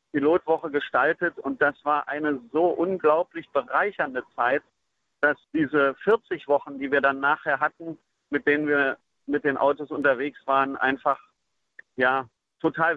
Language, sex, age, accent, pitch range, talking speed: German, male, 40-59, German, 135-160 Hz, 140 wpm